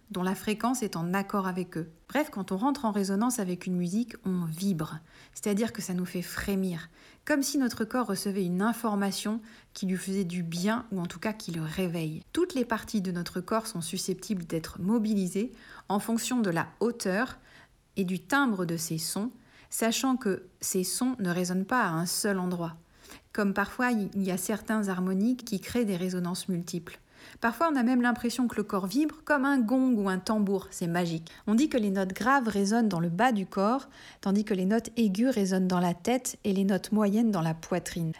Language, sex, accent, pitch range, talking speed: French, female, French, 185-235 Hz, 210 wpm